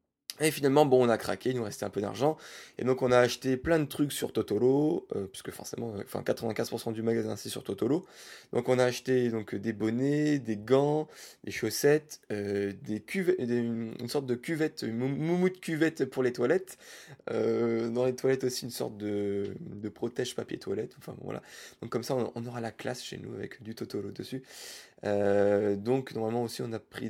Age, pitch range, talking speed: 20-39, 110-140 Hz, 210 wpm